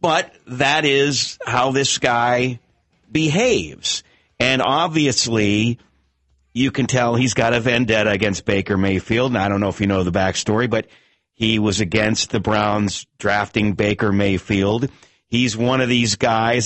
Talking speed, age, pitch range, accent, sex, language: 150 wpm, 50-69, 105-125 Hz, American, male, English